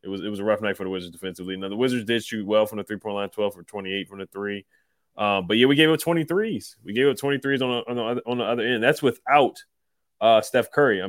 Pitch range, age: 100-120 Hz, 20-39